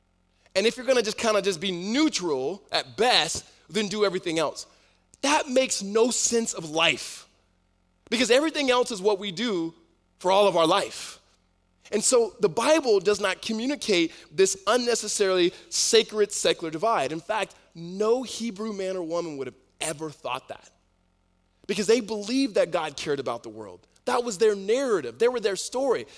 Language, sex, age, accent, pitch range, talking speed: English, male, 20-39, American, 185-250 Hz, 170 wpm